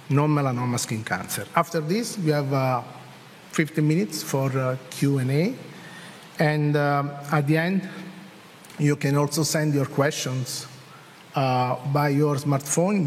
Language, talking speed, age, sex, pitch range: English, 130 wpm, 50-69, male, 135-160 Hz